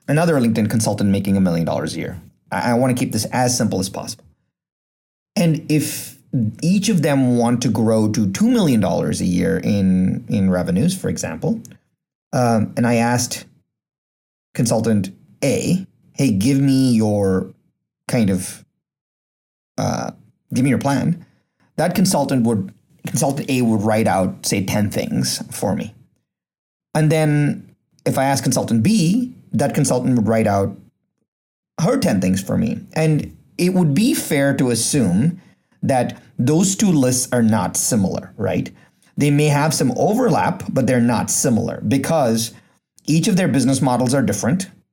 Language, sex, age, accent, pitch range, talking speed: English, male, 30-49, American, 110-155 Hz, 155 wpm